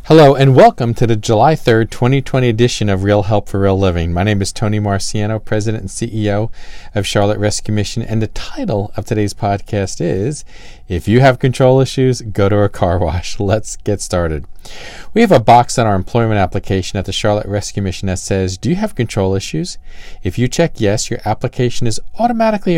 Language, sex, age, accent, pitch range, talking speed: English, male, 40-59, American, 95-120 Hz, 200 wpm